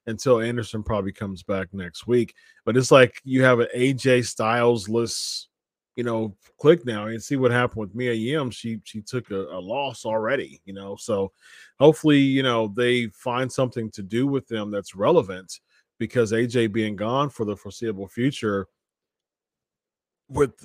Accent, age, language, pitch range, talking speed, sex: American, 30-49, English, 110-145 Hz, 170 wpm, male